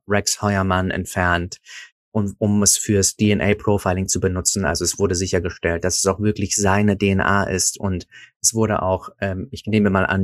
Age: 30-49